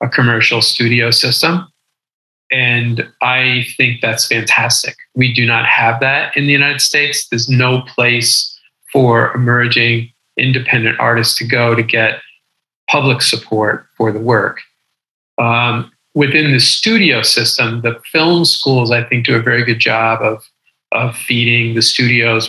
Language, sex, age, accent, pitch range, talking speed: English, male, 40-59, American, 115-125 Hz, 145 wpm